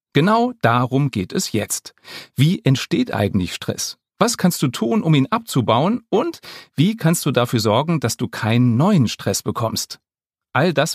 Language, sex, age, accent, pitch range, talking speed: German, male, 40-59, German, 115-160 Hz, 165 wpm